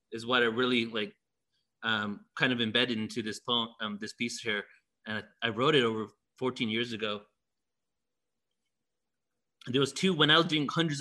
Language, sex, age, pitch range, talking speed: English, male, 30-49, 125-180 Hz, 180 wpm